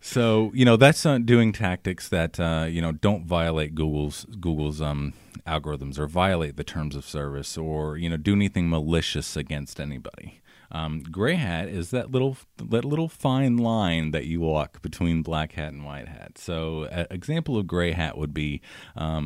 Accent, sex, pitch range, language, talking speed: American, male, 75-95 Hz, English, 180 wpm